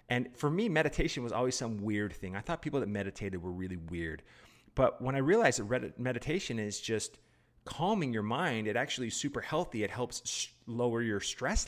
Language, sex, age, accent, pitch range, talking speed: English, male, 30-49, American, 105-125 Hz, 195 wpm